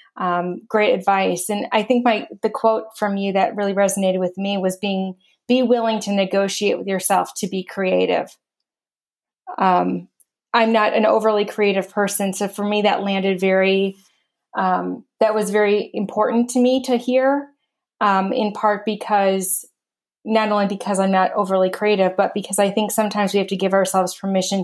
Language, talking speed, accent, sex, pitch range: English, 175 wpm, American, female, 190-215 Hz